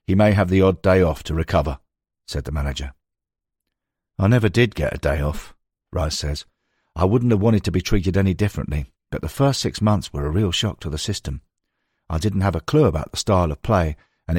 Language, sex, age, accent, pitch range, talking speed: English, male, 50-69, British, 80-105 Hz, 220 wpm